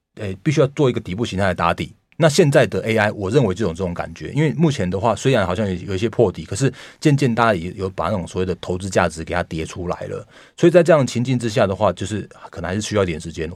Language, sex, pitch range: Chinese, male, 85-115 Hz